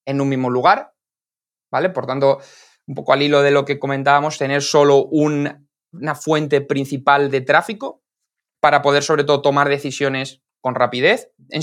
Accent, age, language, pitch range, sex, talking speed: Spanish, 20-39, Spanish, 135-155 Hz, male, 160 wpm